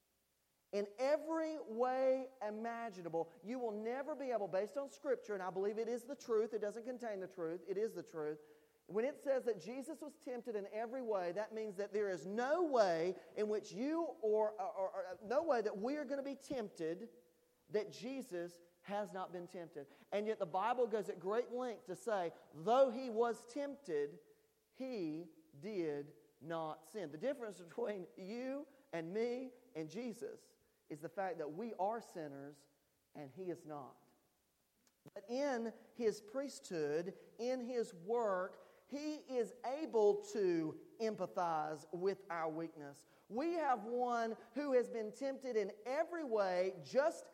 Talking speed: 165 wpm